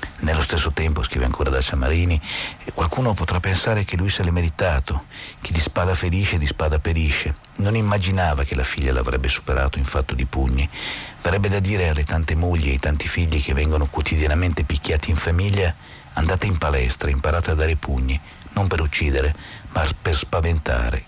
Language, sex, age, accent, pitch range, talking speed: Italian, male, 50-69, native, 70-90 Hz, 175 wpm